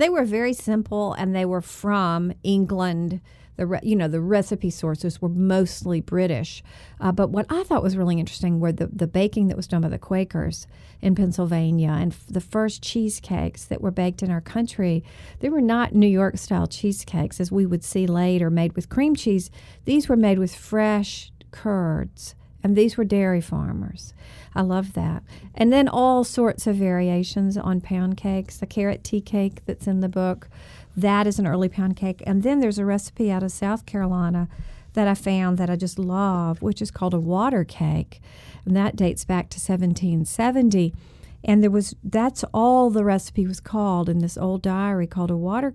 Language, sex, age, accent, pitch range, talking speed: English, female, 50-69, American, 180-210 Hz, 190 wpm